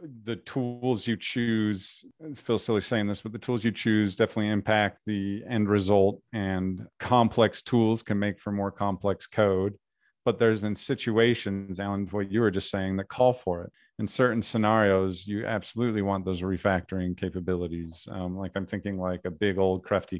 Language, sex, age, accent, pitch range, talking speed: English, male, 40-59, American, 90-105 Hz, 180 wpm